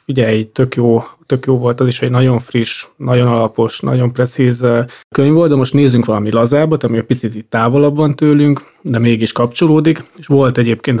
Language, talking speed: Hungarian, 190 wpm